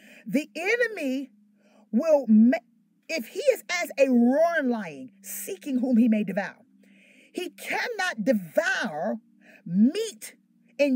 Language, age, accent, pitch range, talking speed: English, 30-49, American, 235-365 Hz, 110 wpm